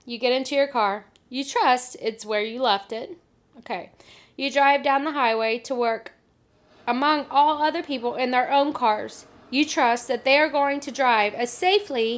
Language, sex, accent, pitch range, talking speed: English, female, American, 240-295 Hz, 185 wpm